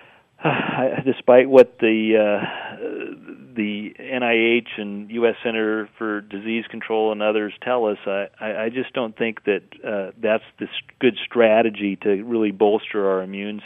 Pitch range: 105-120 Hz